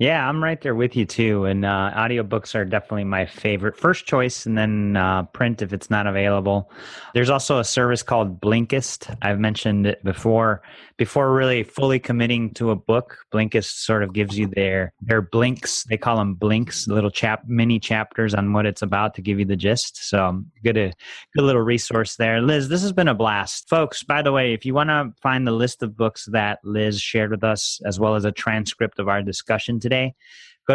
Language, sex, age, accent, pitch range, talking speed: English, male, 30-49, American, 105-125 Hz, 210 wpm